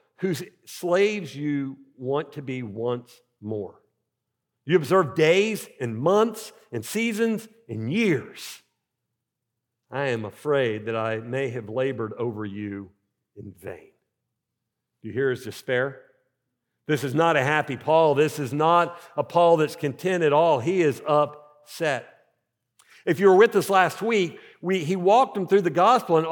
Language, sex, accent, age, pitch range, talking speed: English, male, American, 50-69, 135-195 Hz, 150 wpm